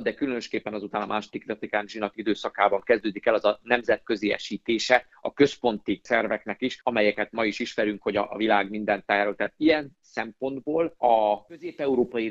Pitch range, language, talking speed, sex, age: 110-135 Hz, Hungarian, 150 wpm, male, 50-69